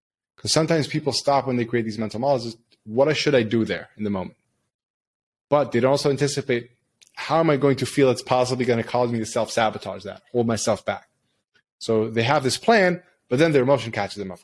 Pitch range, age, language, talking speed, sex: 110-135 Hz, 20-39, English, 215 wpm, male